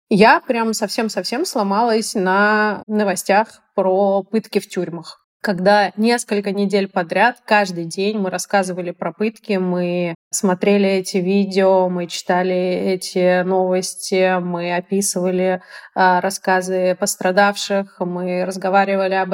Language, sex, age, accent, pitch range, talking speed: Russian, female, 20-39, native, 185-220 Hz, 110 wpm